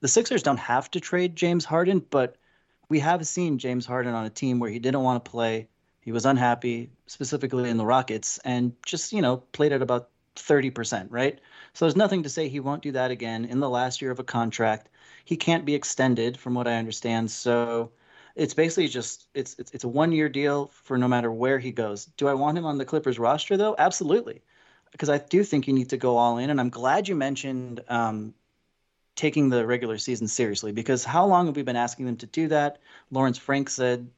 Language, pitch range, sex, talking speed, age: English, 120-145 Hz, male, 220 wpm, 30-49